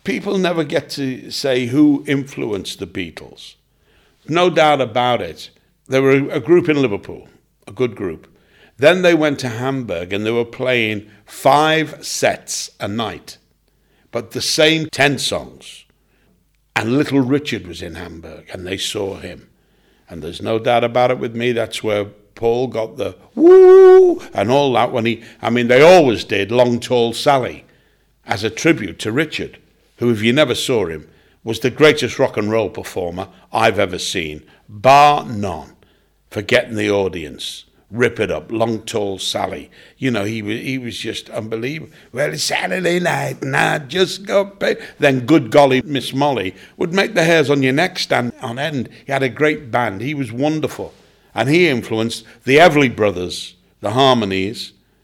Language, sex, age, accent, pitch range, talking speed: English, male, 60-79, British, 110-145 Hz, 170 wpm